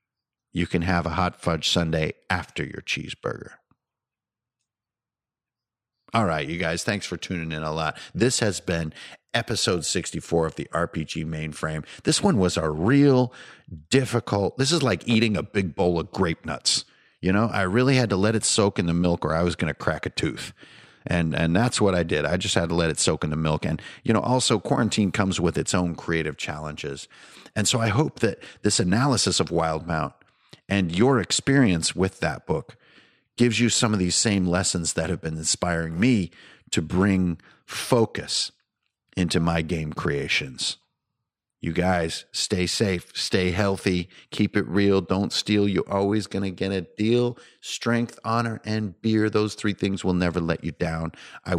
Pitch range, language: 85-110 Hz, English